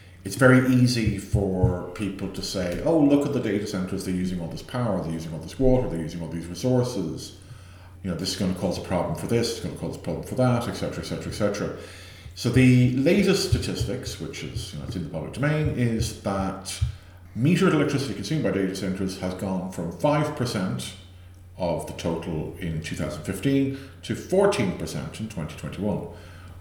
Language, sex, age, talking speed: English, male, 50-69, 205 wpm